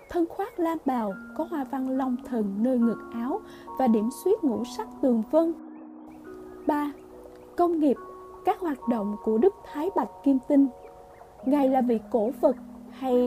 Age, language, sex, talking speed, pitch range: 20-39, Vietnamese, female, 165 wpm, 225-300 Hz